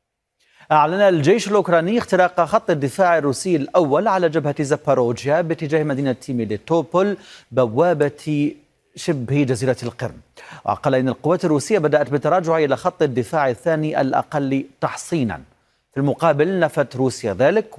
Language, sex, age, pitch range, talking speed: Arabic, male, 40-59, 125-165 Hz, 120 wpm